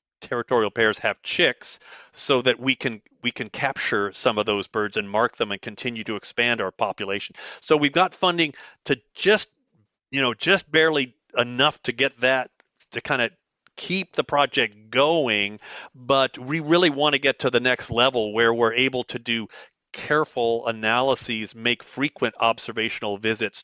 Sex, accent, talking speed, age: male, American, 170 wpm, 40-59